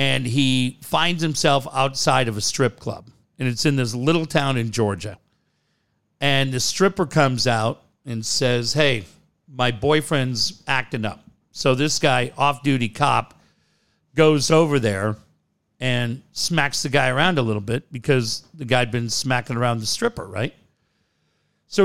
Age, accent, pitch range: 50-69, American, 120-155 Hz